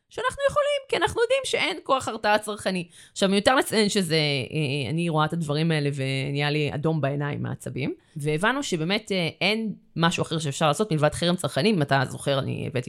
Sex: female